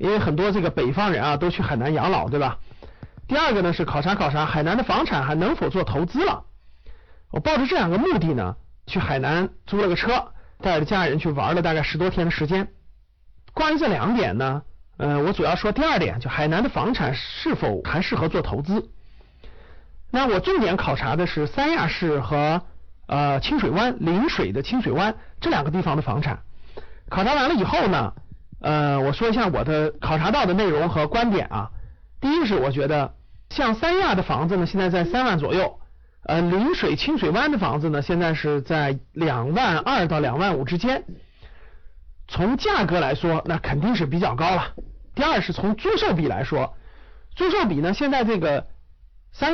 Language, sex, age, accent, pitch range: Chinese, male, 50-69, native, 150-220 Hz